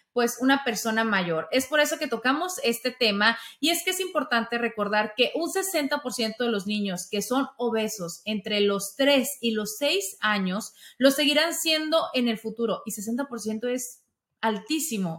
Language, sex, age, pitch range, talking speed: Spanish, female, 30-49, 220-270 Hz, 170 wpm